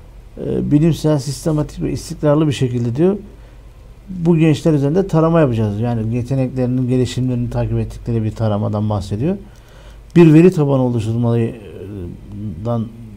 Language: Turkish